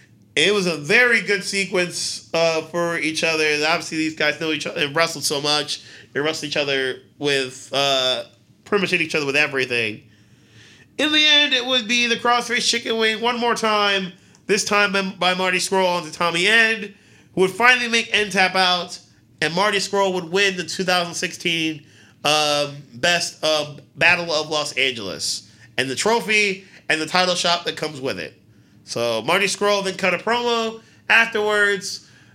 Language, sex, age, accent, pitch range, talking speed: English, male, 30-49, American, 150-200 Hz, 175 wpm